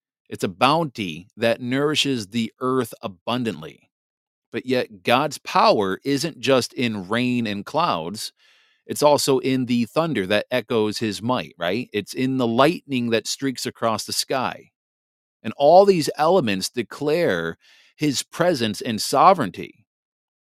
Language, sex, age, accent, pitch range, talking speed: English, male, 40-59, American, 115-150 Hz, 135 wpm